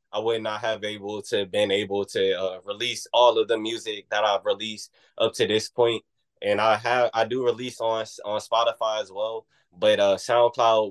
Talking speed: 200 wpm